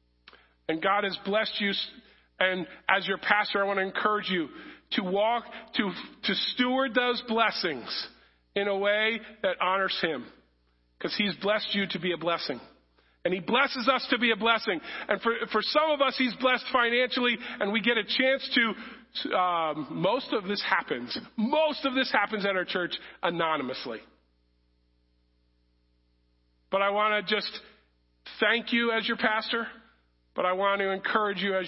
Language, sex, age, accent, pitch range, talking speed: English, male, 40-59, American, 175-225 Hz, 165 wpm